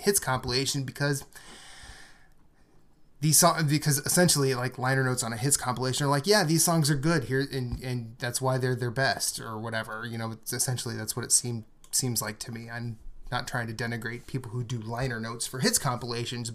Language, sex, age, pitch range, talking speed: English, male, 20-39, 115-140 Hz, 205 wpm